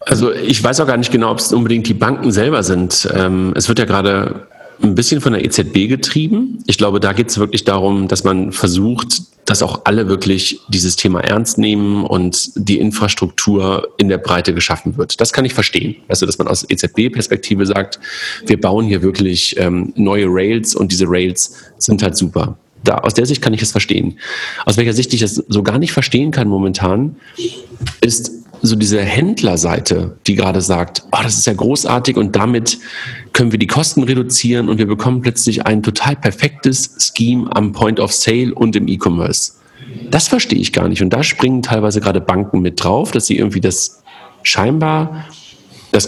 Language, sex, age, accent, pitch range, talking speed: German, male, 40-59, German, 95-125 Hz, 190 wpm